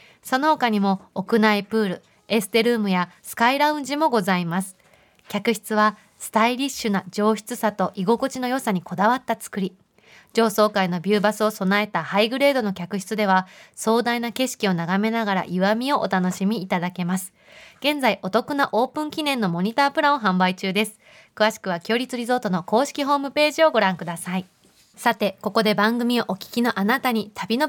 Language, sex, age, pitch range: Japanese, female, 20-39, 190-230 Hz